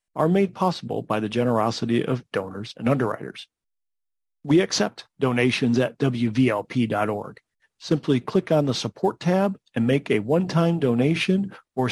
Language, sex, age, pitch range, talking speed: English, male, 40-59, 115-160 Hz, 135 wpm